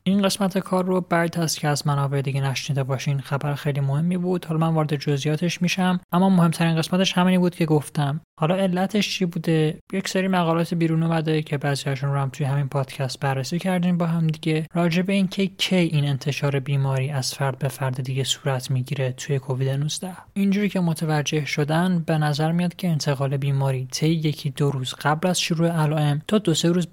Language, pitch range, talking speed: Persian, 140-170 Hz, 195 wpm